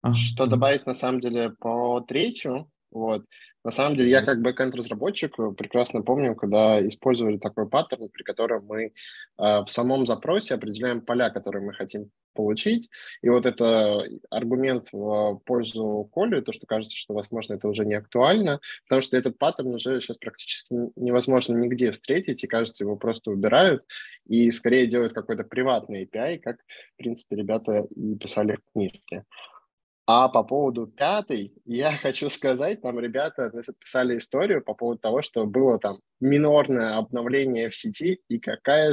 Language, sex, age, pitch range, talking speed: Russian, male, 20-39, 110-130 Hz, 155 wpm